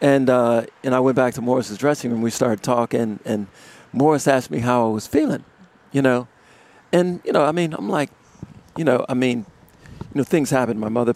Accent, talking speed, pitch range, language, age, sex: American, 215 wpm, 115-140 Hz, English, 50-69, male